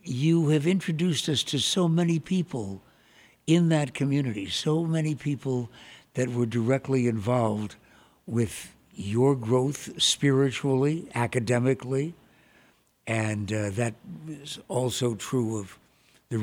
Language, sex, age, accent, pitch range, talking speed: English, male, 60-79, American, 115-140 Hz, 115 wpm